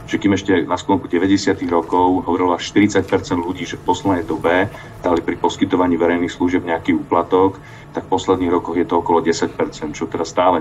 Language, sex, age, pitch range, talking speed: Slovak, male, 40-59, 85-95 Hz, 180 wpm